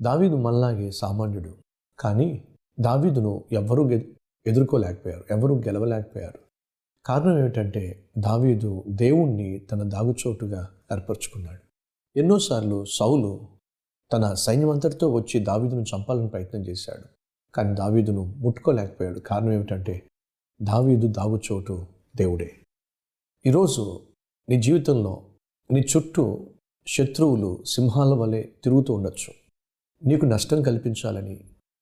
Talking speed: 90 wpm